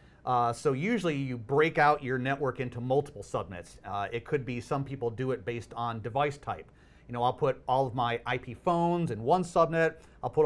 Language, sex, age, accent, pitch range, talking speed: English, male, 40-59, American, 115-140 Hz, 210 wpm